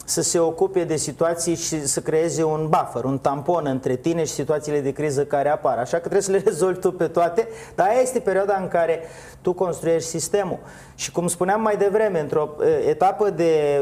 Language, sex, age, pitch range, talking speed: Romanian, male, 30-49, 145-180 Hz, 200 wpm